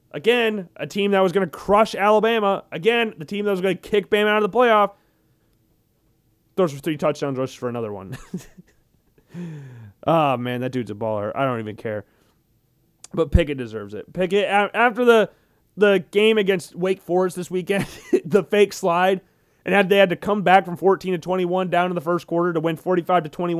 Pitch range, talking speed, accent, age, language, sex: 145-205 Hz, 195 wpm, American, 30-49, English, male